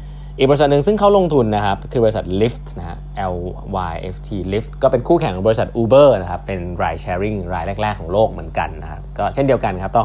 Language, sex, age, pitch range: Thai, male, 20-39, 90-145 Hz